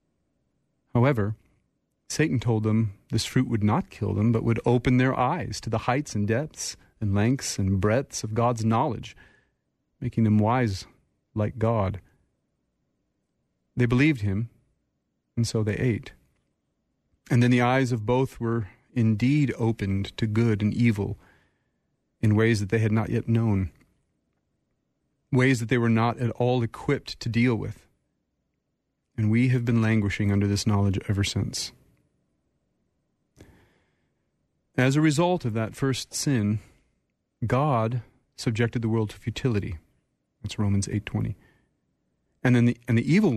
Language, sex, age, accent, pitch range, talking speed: English, male, 30-49, American, 105-125 Hz, 145 wpm